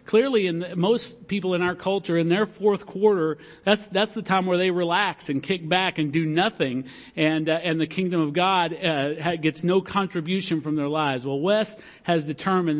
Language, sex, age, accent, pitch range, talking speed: English, male, 50-69, American, 155-195 Hz, 200 wpm